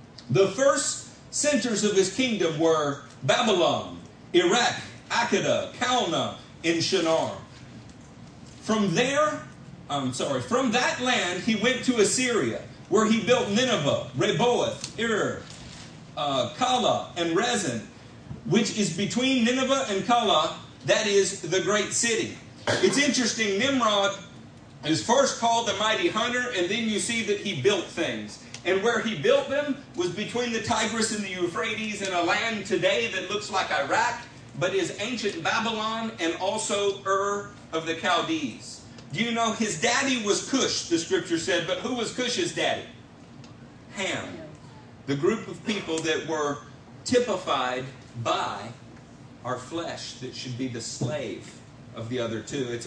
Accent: American